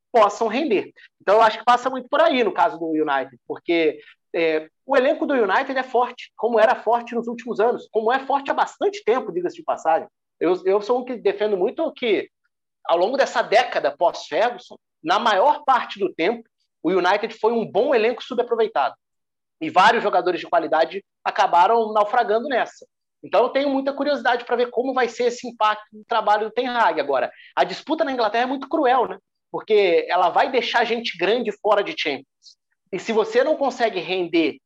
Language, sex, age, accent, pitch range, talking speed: Portuguese, male, 30-49, Brazilian, 210-275 Hz, 195 wpm